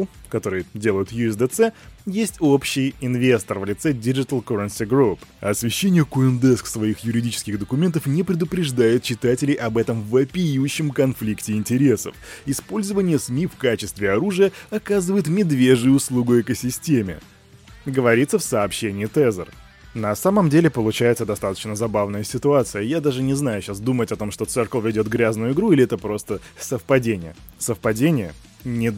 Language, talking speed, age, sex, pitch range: Russian, 130 wpm, 20-39, male, 110-145 Hz